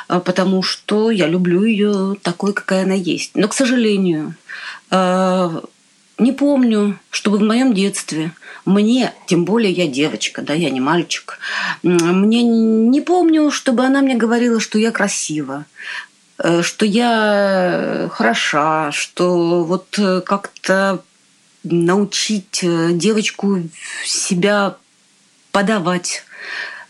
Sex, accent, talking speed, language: female, native, 105 wpm, Russian